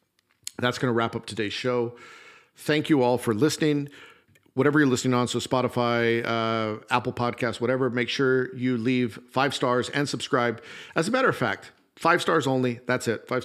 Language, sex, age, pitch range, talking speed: English, male, 50-69, 115-130 Hz, 185 wpm